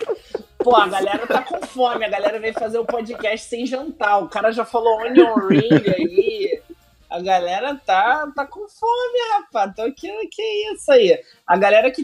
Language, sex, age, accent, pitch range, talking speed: Portuguese, male, 20-39, Brazilian, 195-275 Hz, 180 wpm